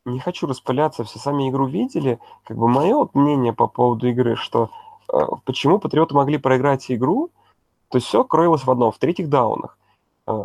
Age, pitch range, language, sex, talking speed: 20-39, 115-135 Hz, Russian, male, 185 wpm